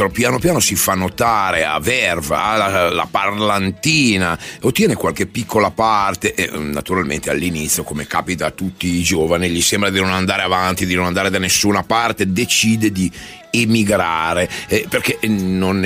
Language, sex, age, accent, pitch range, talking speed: Italian, male, 40-59, native, 85-105 Hz, 145 wpm